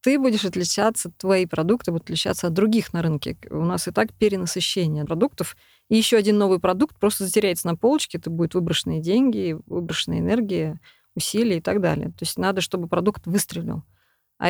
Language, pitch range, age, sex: Russian, 175-220 Hz, 20-39, female